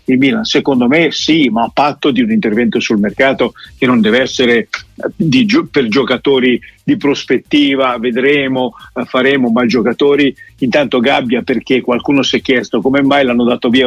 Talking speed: 165 wpm